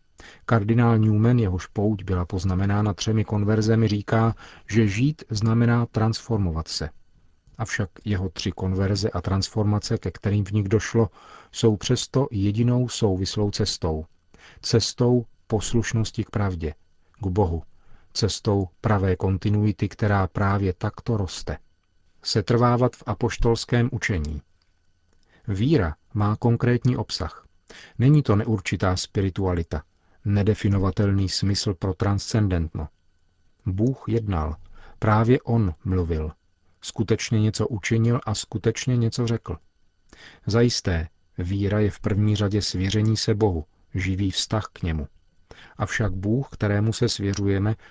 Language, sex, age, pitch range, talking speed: Czech, male, 40-59, 90-115 Hz, 115 wpm